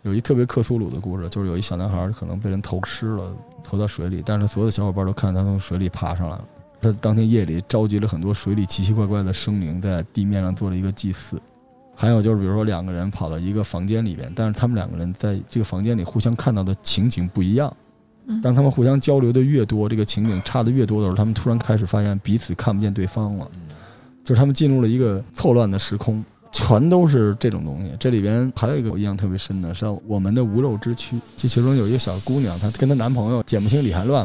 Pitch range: 100-120 Hz